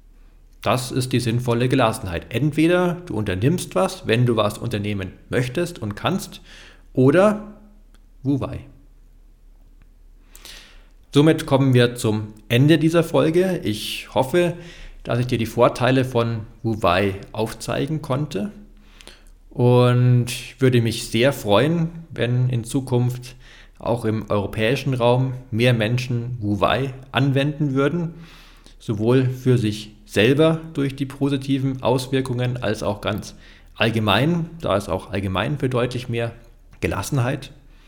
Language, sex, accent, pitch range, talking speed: German, male, German, 105-140 Hz, 115 wpm